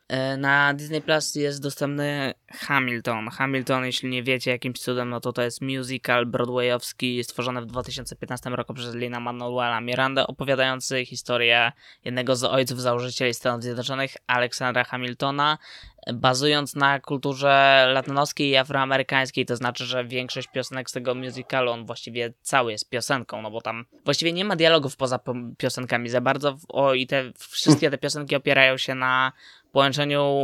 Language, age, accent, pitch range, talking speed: Polish, 20-39, native, 125-145 Hz, 150 wpm